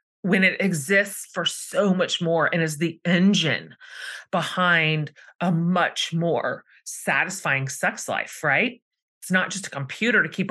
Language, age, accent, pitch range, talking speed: English, 30-49, American, 160-205 Hz, 150 wpm